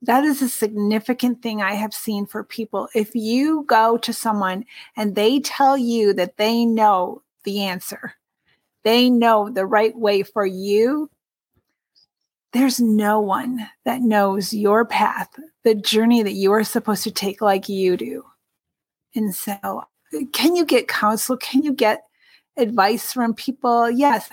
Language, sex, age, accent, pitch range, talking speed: English, female, 40-59, American, 210-240 Hz, 155 wpm